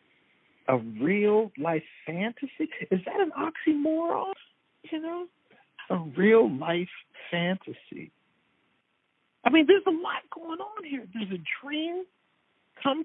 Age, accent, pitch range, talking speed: 50-69, American, 155-255 Hz, 110 wpm